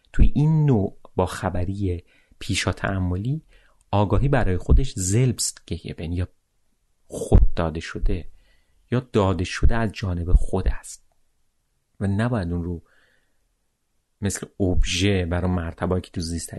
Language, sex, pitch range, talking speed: Persian, male, 90-105 Hz, 125 wpm